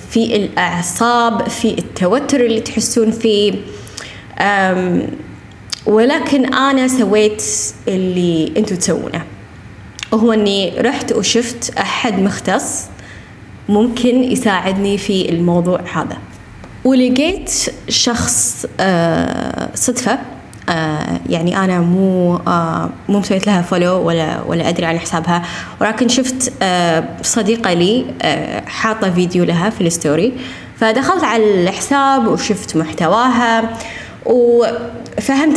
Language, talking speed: Arabic, 100 wpm